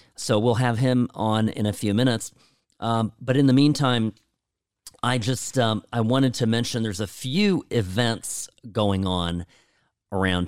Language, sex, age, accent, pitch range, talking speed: English, male, 40-59, American, 100-130 Hz, 160 wpm